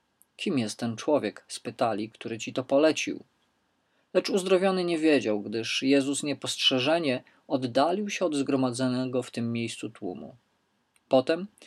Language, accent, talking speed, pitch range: Polish, native, 130 wpm, 120-160 Hz